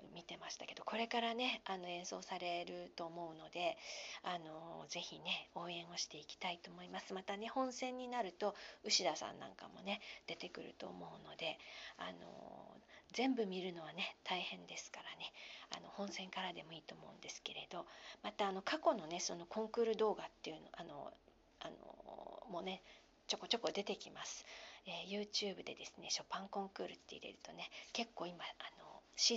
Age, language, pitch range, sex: 40-59, Japanese, 180-230 Hz, female